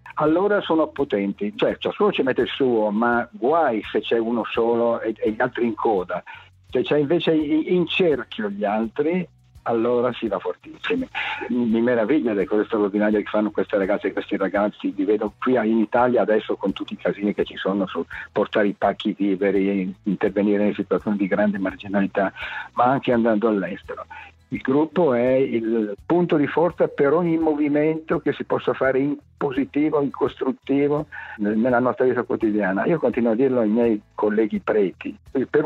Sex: male